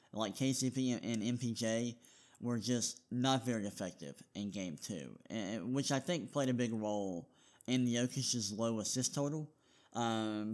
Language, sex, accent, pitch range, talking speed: English, male, American, 110-130 Hz, 155 wpm